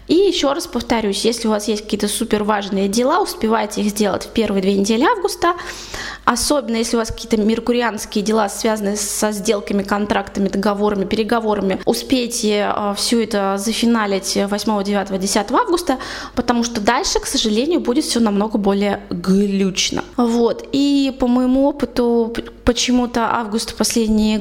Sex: female